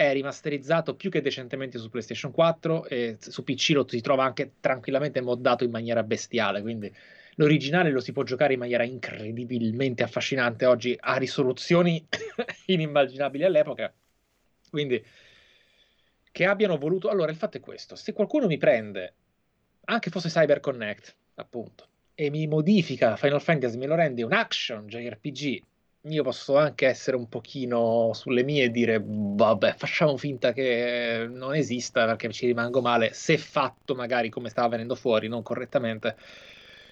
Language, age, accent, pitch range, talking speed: Italian, 20-39, native, 120-155 Hz, 155 wpm